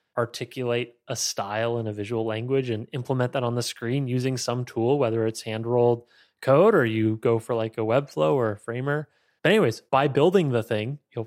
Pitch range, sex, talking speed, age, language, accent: 110-125 Hz, male, 200 wpm, 20-39, English, American